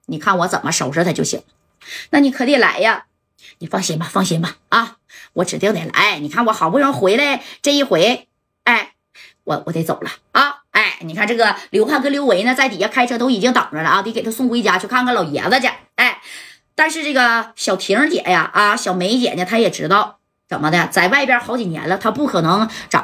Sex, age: female, 20-39